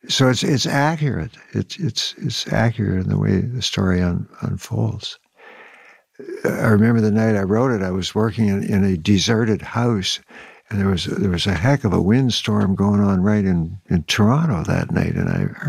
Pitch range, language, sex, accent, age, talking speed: 95-120 Hz, English, male, American, 60-79, 195 wpm